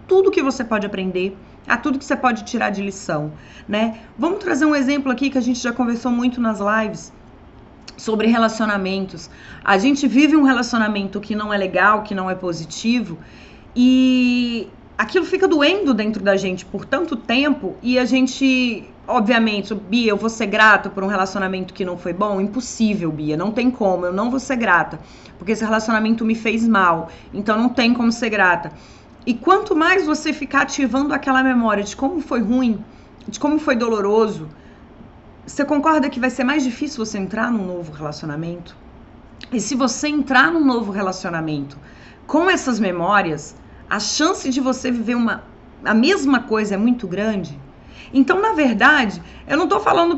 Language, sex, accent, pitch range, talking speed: Portuguese, female, Brazilian, 200-265 Hz, 175 wpm